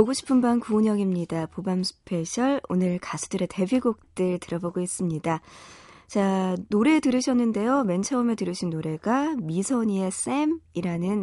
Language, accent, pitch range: Korean, native, 175-245 Hz